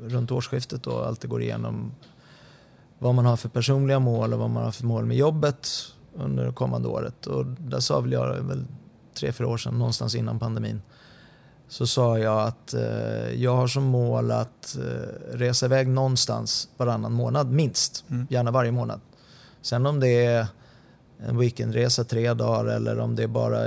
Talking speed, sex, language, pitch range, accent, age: 175 wpm, male, English, 115-130 Hz, Swedish, 30-49